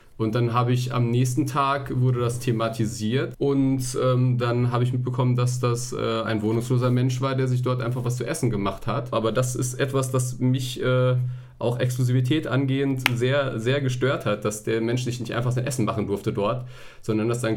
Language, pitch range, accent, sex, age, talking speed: German, 115-130 Hz, German, male, 30-49, 205 wpm